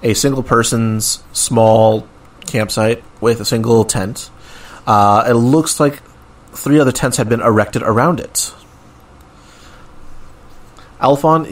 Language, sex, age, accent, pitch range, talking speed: English, male, 30-49, American, 110-135 Hz, 115 wpm